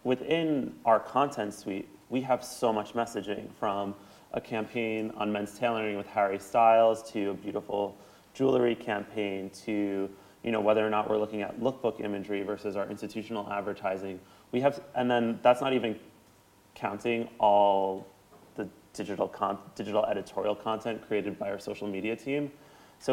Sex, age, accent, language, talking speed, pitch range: male, 30-49, American, English, 155 wpm, 100-120 Hz